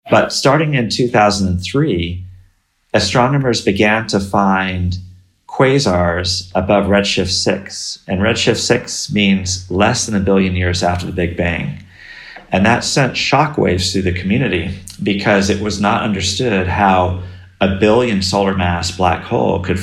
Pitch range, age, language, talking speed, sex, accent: 90-105 Hz, 30-49, English, 135 wpm, male, American